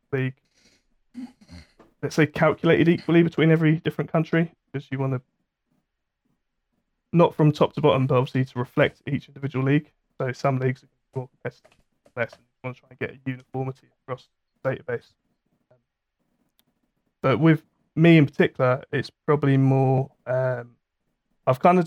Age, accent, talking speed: 20-39, British, 155 wpm